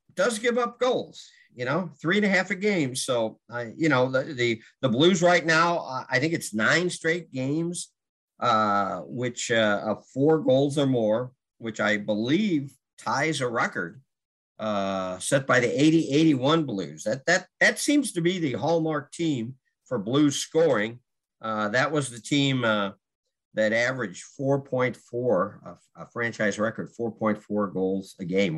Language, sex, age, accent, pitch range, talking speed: English, male, 50-69, American, 110-155 Hz, 160 wpm